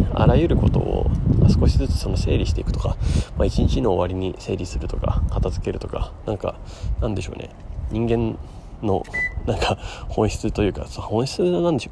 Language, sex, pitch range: Japanese, male, 90-115 Hz